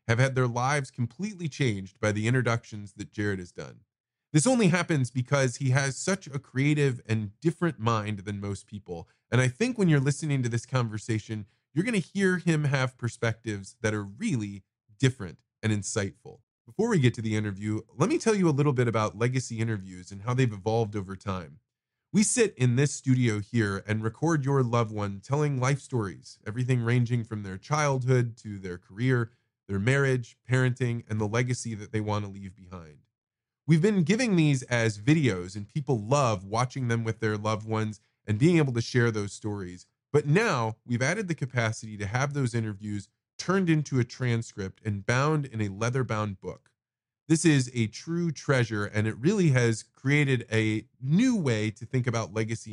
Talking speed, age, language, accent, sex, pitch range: 190 wpm, 20-39, English, American, male, 110-140 Hz